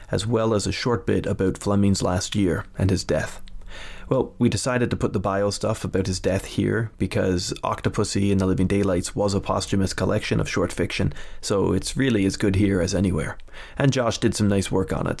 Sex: male